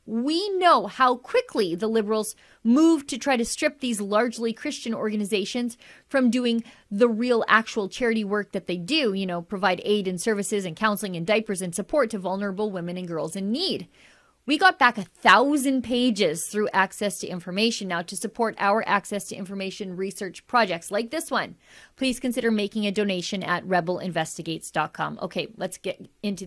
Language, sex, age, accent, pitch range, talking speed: English, female, 30-49, American, 195-245 Hz, 175 wpm